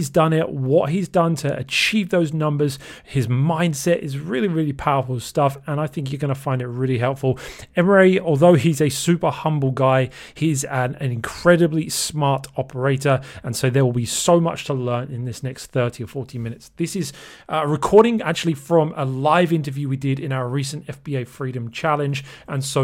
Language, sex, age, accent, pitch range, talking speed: English, male, 30-49, British, 130-155 Hz, 195 wpm